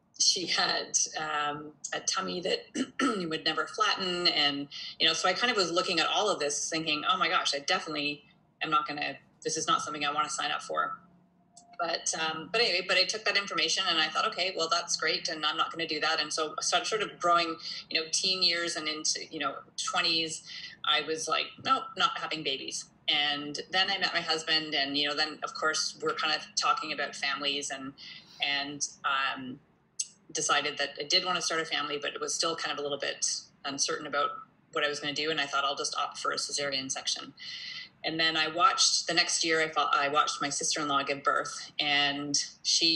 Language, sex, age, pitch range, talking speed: English, female, 30-49, 150-185 Hz, 225 wpm